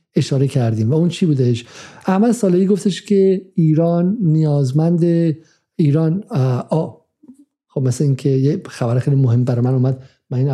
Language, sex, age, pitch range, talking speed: Persian, male, 50-69, 125-165 Hz, 165 wpm